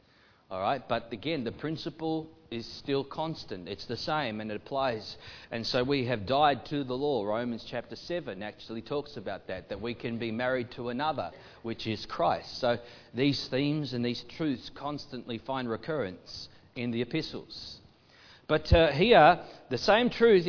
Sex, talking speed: male, 170 wpm